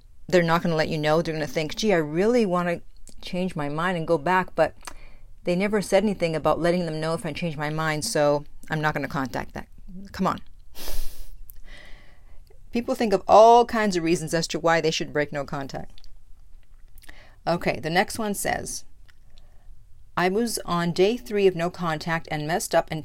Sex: female